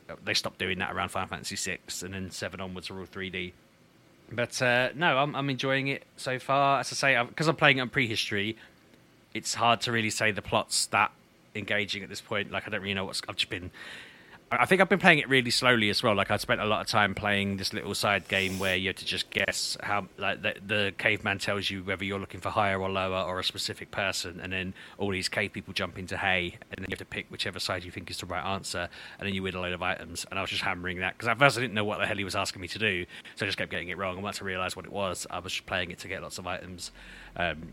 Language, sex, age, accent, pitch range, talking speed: English, male, 30-49, British, 95-115 Hz, 285 wpm